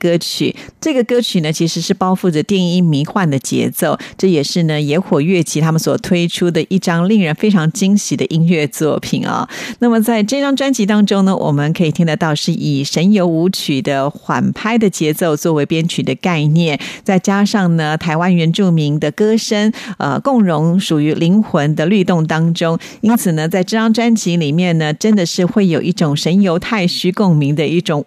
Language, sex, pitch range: Chinese, female, 155-205 Hz